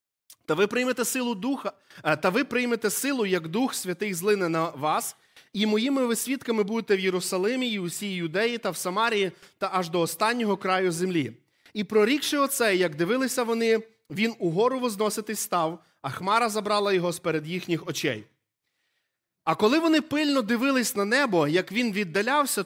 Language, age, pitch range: Ukrainian, 30-49, 170-225 Hz